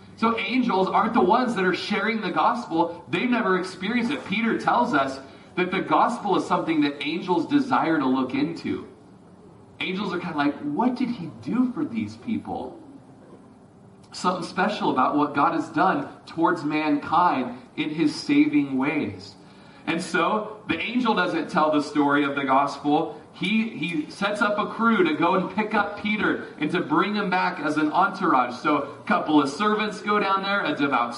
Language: English